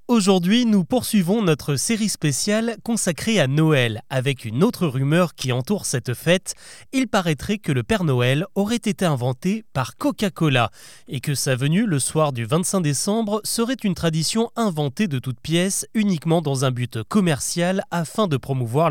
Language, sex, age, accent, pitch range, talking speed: French, male, 20-39, French, 135-200 Hz, 165 wpm